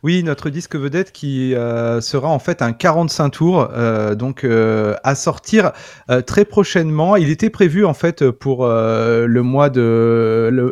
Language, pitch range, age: French, 125-165 Hz, 30-49